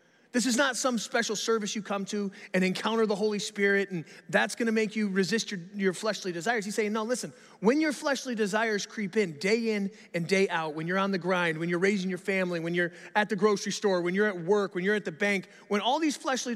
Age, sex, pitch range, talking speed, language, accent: 30-49, male, 180-225 Hz, 250 wpm, English, American